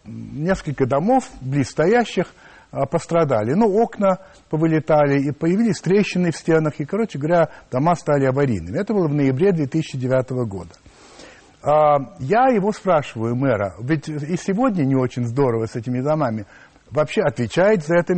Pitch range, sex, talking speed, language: 135-185 Hz, male, 140 wpm, Russian